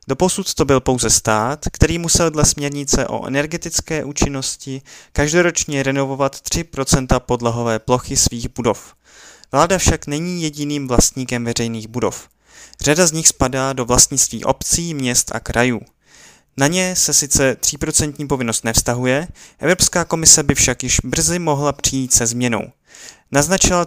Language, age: Czech, 20-39